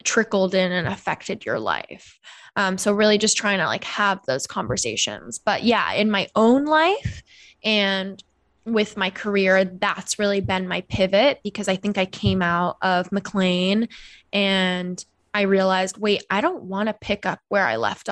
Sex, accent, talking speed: female, American, 170 wpm